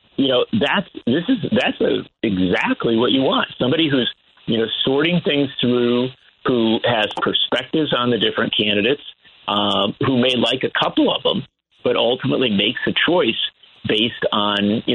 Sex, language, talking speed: male, English, 165 wpm